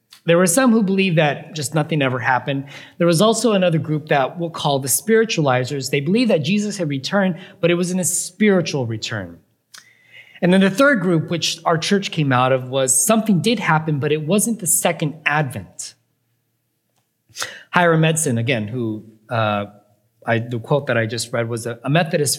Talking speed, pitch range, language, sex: 190 wpm, 130-175 Hz, English, male